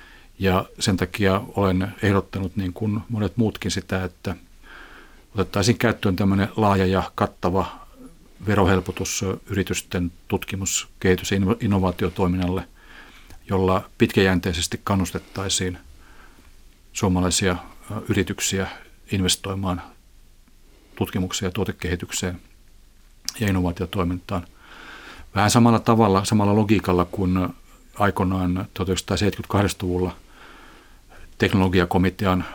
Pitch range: 90-100 Hz